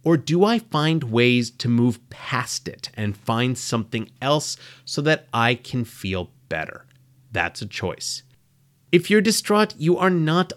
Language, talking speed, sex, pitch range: English, 160 wpm, male, 125-165 Hz